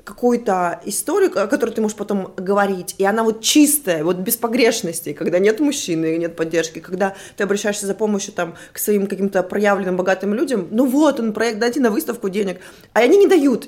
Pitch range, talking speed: 185-240 Hz, 195 wpm